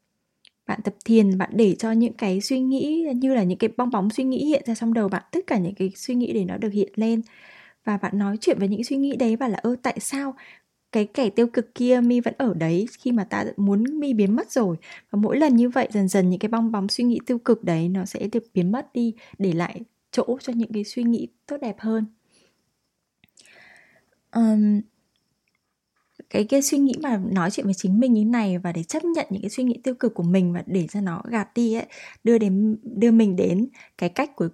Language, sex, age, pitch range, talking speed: Vietnamese, female, 10-29, 195-245 Hz, 240 wpm